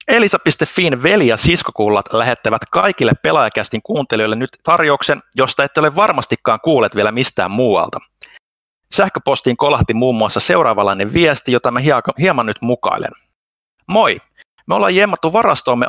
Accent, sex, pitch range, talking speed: native, male, 115-150 Hz, 130 wpm